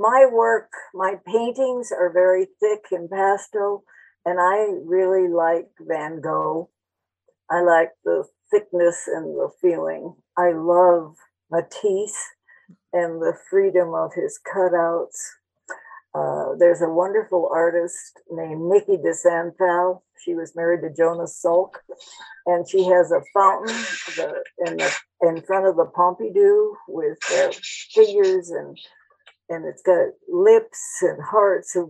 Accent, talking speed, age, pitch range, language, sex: American, 130 wpm, 60-79, 170-235 Hz, English, female